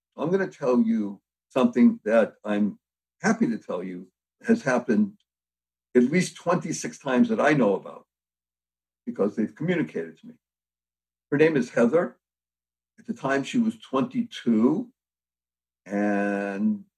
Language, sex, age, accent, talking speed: English, male, 60-79, American, 135 wpm